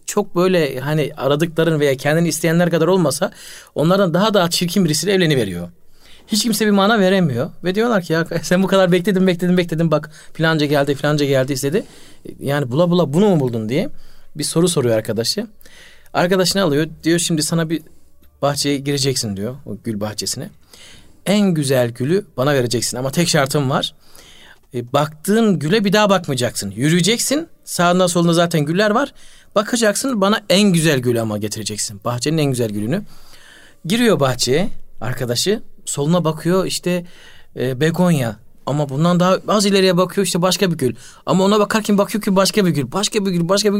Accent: native